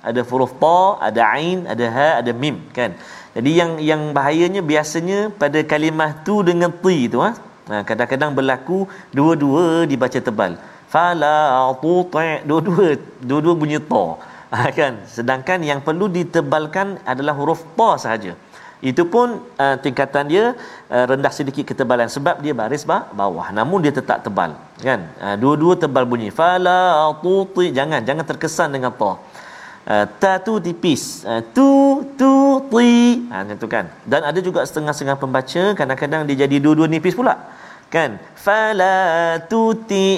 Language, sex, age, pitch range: Malayalam, male, 40-59, 130-185 Hz